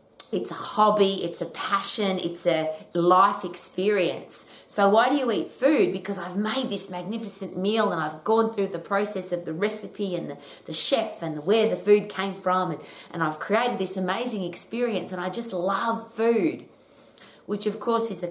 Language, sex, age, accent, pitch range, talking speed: English, female, 30-49, Australian, 170-215 Hz, 190 wpm